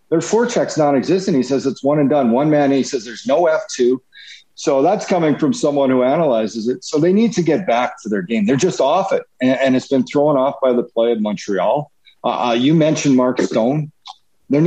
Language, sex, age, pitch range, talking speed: English, male, 50-69, 125-155 Hz, 220 wpm